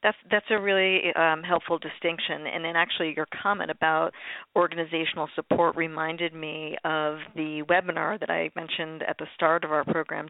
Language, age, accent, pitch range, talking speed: English, 40-59, American, 155-175 Hz, 170 wpm